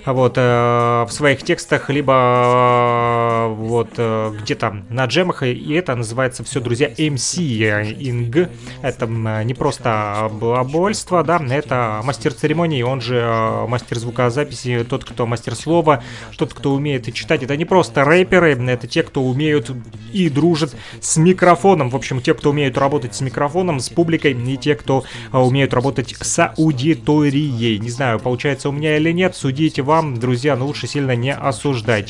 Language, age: Russian, 30-49